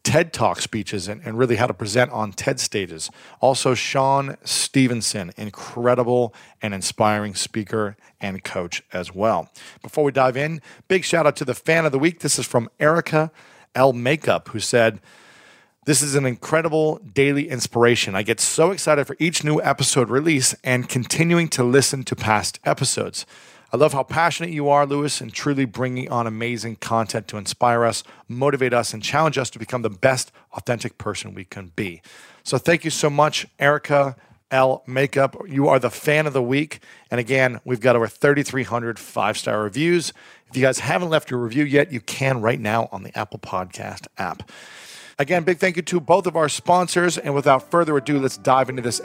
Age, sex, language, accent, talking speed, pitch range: 40-59, male, English, American, 185 wpm, 115-150 Hz